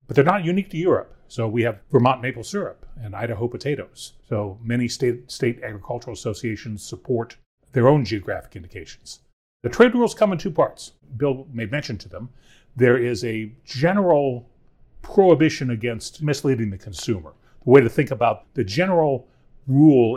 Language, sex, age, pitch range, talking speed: English, male, 40-59, 110-130 Hz, 165 wpm